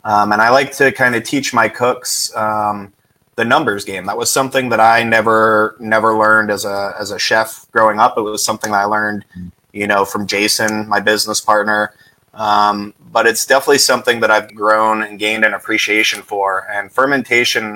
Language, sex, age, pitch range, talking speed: English, male, 20-39, 105-115 Hz, 195 wpm